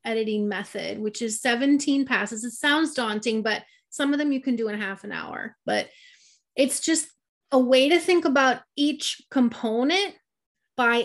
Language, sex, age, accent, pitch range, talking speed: English, female, 30-49, American, 230-290 Hz, 170 wpm